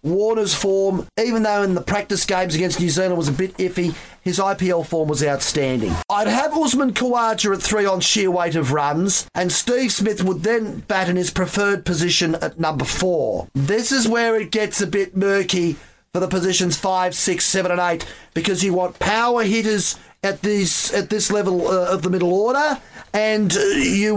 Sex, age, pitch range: male, 40-59, 180-215 Hz